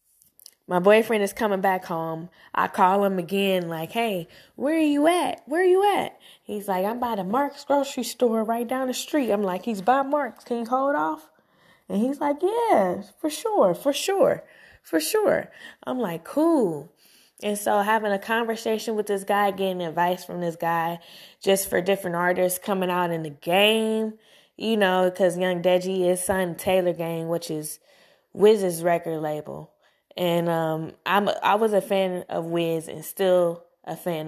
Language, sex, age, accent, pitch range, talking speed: English, female, 20-39, American, 170-215 Hz, 180 wpm